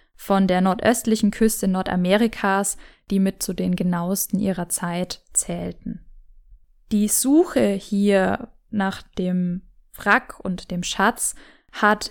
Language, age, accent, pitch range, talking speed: German, 10-29, German, 190-220 Hz, 115 wpm